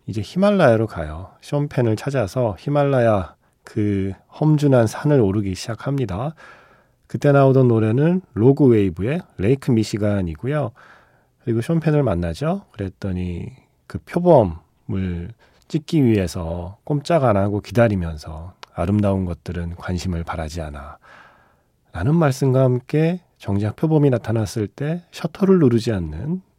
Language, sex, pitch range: Korean, male, 95-140 Hz